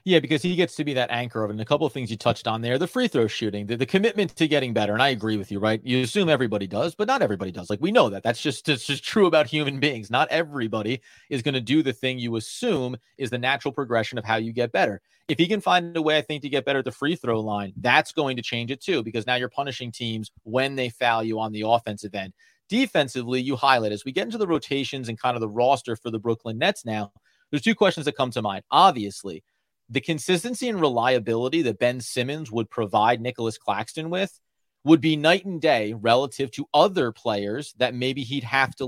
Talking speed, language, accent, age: 250 wpm, English, American, 30-49